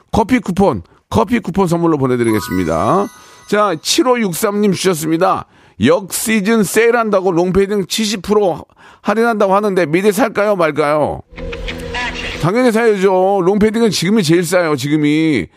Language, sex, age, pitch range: Korean, male, 40-59, 145-200 Hz